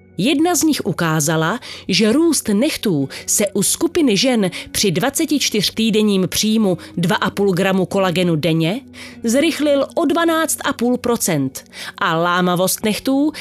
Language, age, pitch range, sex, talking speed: Slovak, 30-49, 175-245 Hz, female, 110 wpm